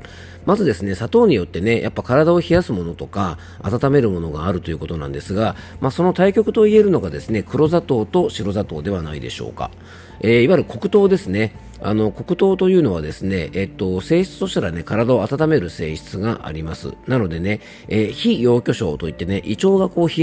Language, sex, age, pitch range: Japanese, male, 40-59, 85-140 Hz